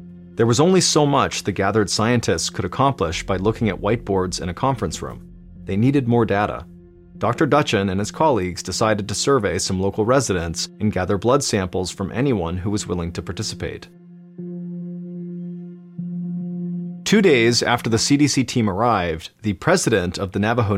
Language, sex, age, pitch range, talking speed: English, male, 40-59, 95-125 Hz, 160 wpm